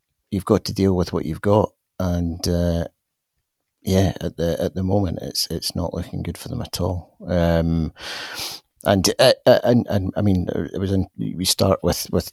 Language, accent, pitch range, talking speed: English, British, 75-90 Hz, 190 wpm